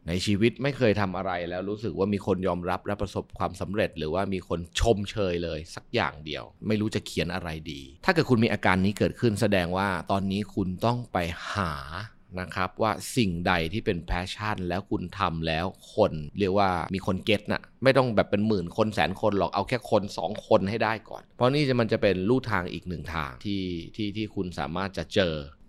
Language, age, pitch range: Thai, 20-39, 85-110 Hz